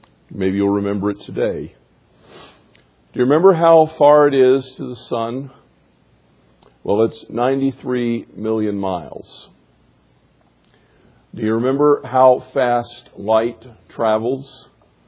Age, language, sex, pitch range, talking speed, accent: 50-69, English, male, 100-125 Hz, 105 wpm, American